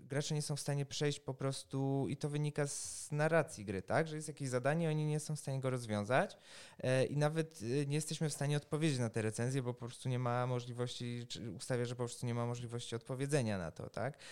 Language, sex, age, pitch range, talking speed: Polish, male, 20-39, 110-140 Hz, 230 wpm